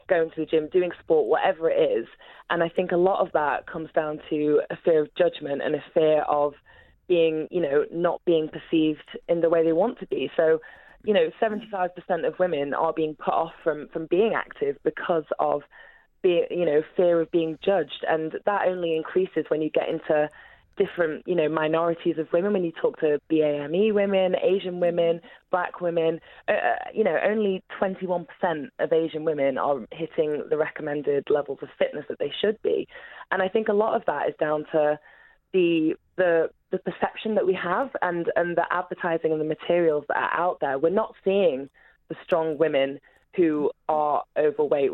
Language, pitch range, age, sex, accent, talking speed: English, 155-195 Hz, 20-39, female, British, 190 wpm